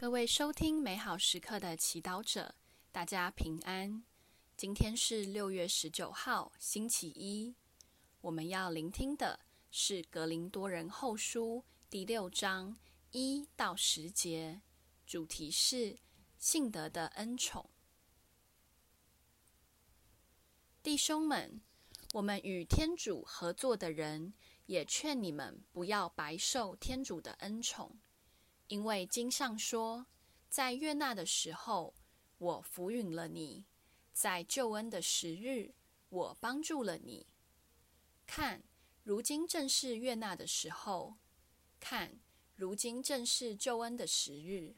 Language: Chinese